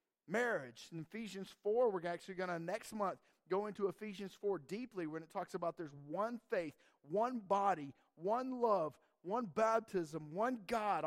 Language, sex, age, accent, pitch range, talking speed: English, male, 50-69, American, 175-230 Hz, 165 wpm